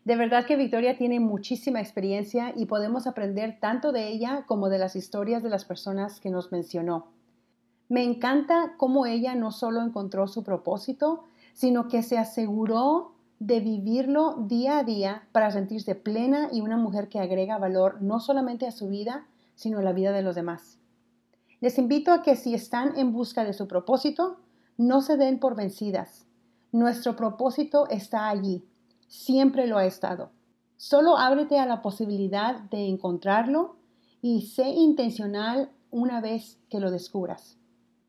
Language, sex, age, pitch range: English, female, 40-59, 200-255 Hz